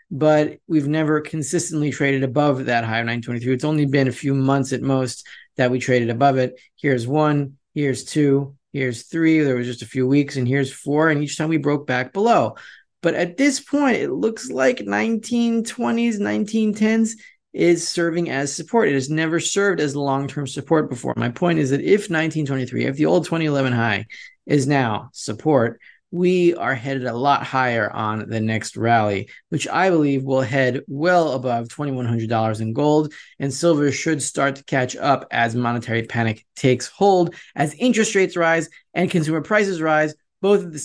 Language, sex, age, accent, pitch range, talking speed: English, male, 30-49, American, 130-170 Hz, 180 wpm